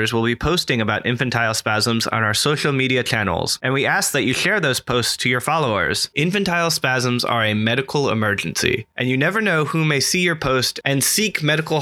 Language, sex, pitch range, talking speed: English, male, 115-150 Hz, 205 wpm